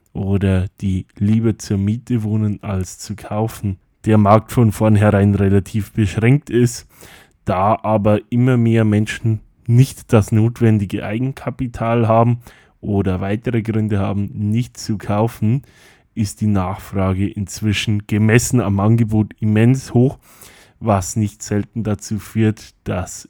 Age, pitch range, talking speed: 10-29, 100-115 Hz, 125 wpm